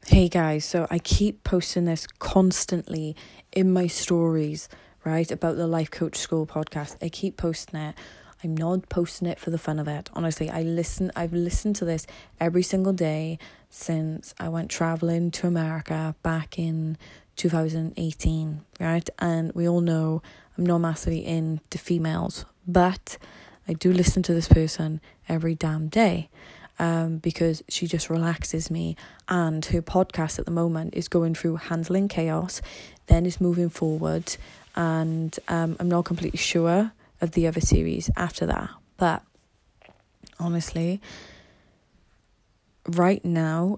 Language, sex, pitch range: English, female, 160-175 Hz